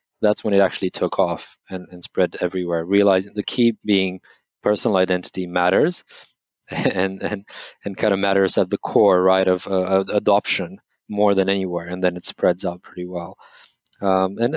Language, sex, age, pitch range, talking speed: English, male, 20-39, 90-105 Hz, 175 wpm